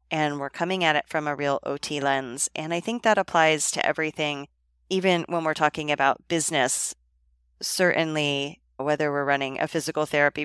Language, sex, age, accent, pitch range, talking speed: English, female, 30-49, American, 140-165 Hz, 170 wpm